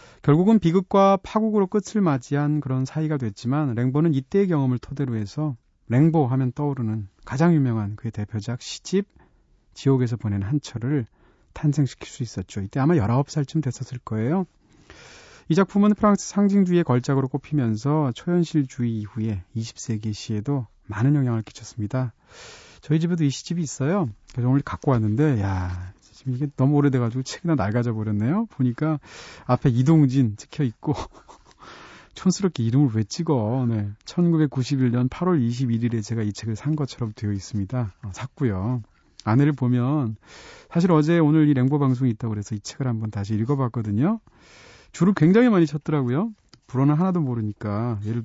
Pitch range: 110-150 Hz